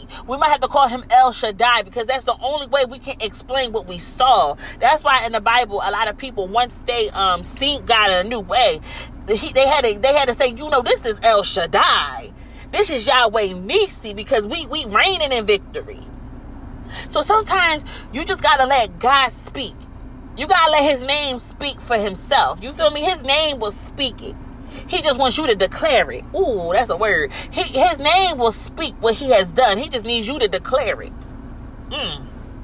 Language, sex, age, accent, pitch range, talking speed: English, female, 30-49, American, 235-320 Hz, 210 wpm